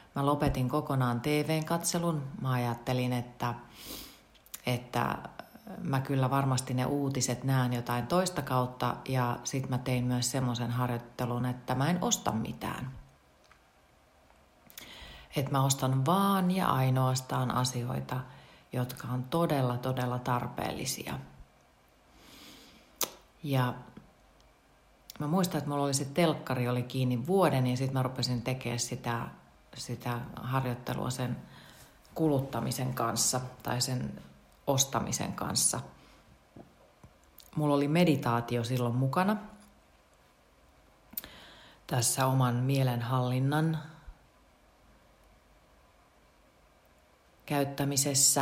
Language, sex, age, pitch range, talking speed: Finnish, female, 40-59, 120-140 Hz, 95 wpm